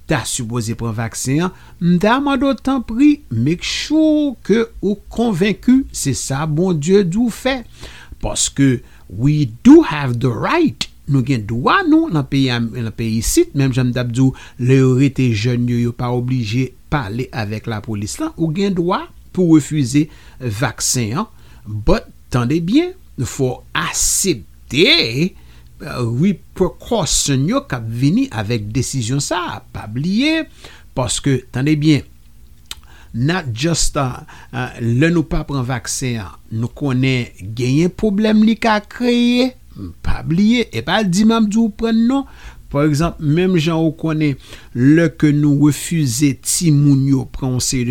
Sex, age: male, 60-79